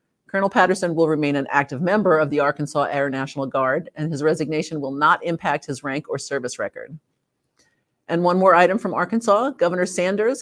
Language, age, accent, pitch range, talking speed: English, 50-69, American, 145-180 Hz, 185 wpm